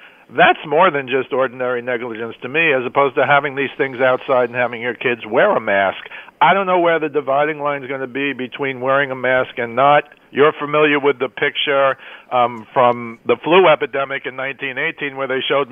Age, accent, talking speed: 50-69, American, 205 wpm